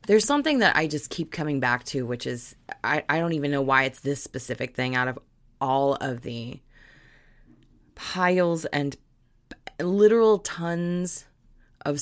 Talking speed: 155 wpm